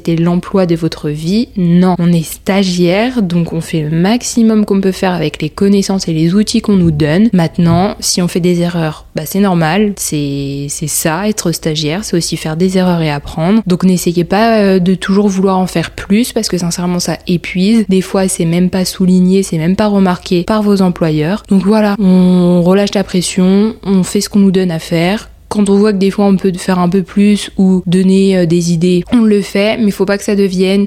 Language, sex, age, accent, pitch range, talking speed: French, female, 20-39, French, 170-195 Hz, 220 wpm